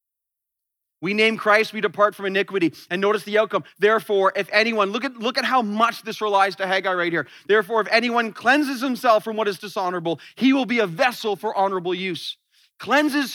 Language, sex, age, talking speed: English, male, 30-49, 200 wpm